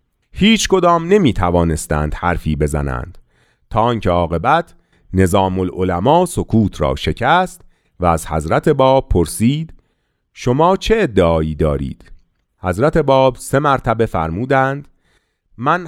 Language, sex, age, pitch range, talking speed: Persian, male, 40-59, 90-145 Hz, 110 wpm